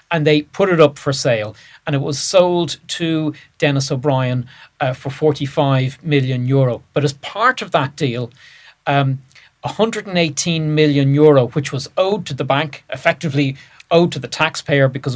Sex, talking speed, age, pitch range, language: male, 160 wpm, 40-59, 140-160 Hz, English